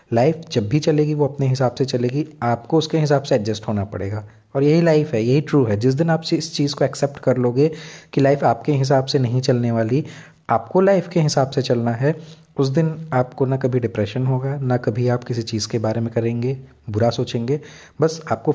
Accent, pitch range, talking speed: native, 115-150 Hz, 215 wpm